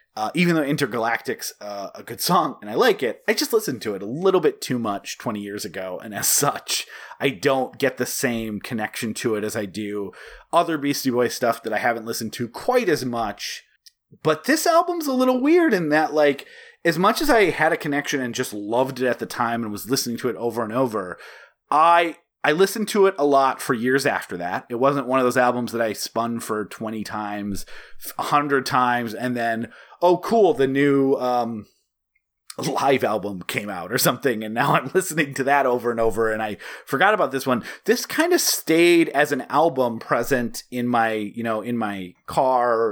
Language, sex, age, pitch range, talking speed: English, male, 30-49, 115-160 Hz, 210 wpm